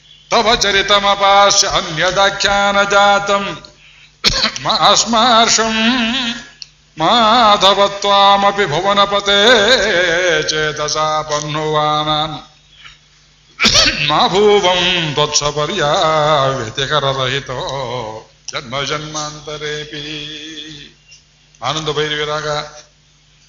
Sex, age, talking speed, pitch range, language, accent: male, 50-69, 35 wpm, 150-165 Hz, Kannada, native